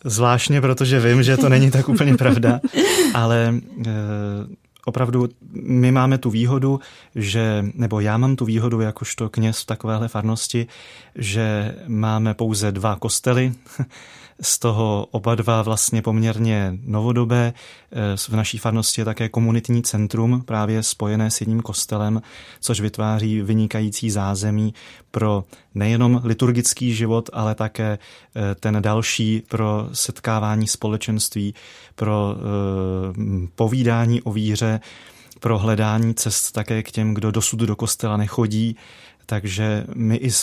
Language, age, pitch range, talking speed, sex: Czech, 30-49, 110-120 Hz, 125 wpm, male